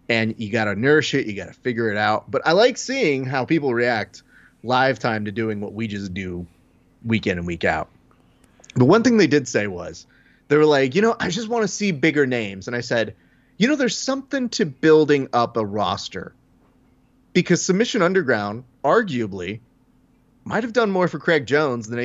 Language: English